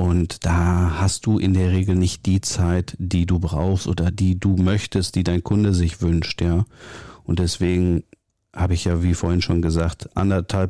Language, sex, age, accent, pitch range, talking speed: German, male, 40-59, German, 90-115 Hz, 185 wpm